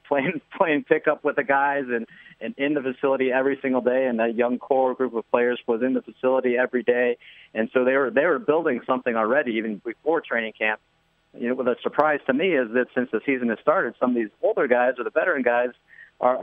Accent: American